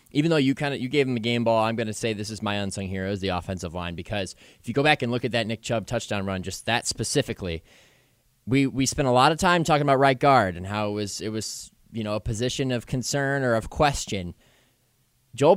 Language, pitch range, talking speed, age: English, 105-135 Hz, 260 wpm, 20-39